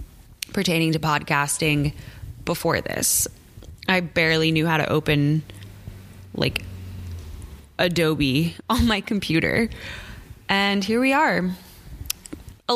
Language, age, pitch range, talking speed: English, 20-39, 160-190 Hz, 100 wpm